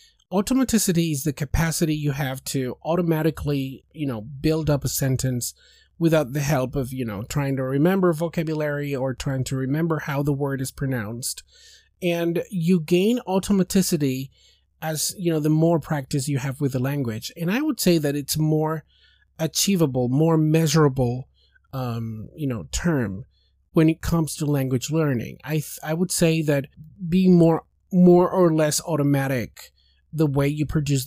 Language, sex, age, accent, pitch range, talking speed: English, male, 30-49, American, 135-165 Hz, 160 wpm